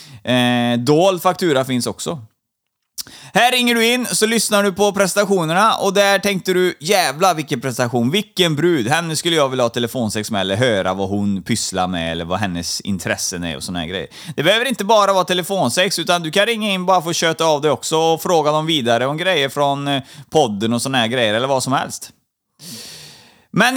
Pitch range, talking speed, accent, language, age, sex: 125-195 Hz, 200 wpm, native, Swedish, 30-49, male